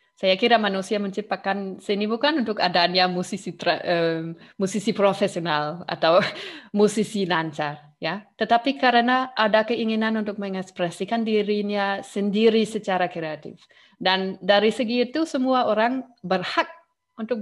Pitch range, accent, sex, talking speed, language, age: 190-245 Hz, native, female, 115 wpm, Indonesian, 20-39